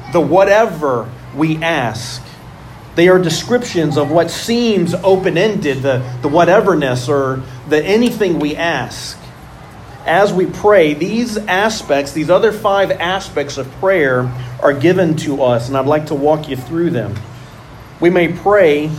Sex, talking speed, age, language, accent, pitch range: male, 140 wpm, 40-59, English, American, 135-195 Hz